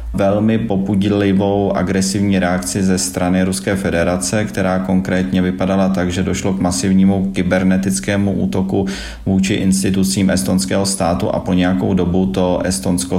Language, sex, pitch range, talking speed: Slovak, male, 85-95 Hz, 125 wpm